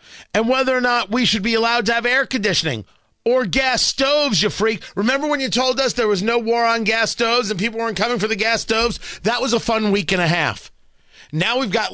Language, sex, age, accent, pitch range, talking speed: English, male, 40-59, American, 175-240 Hz, 240 wpm